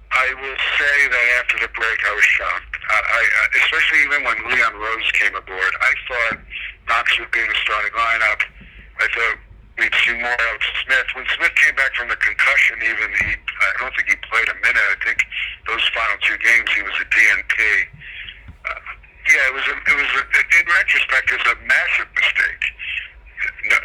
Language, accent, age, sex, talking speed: English, American, 60-79, male, 200 wpm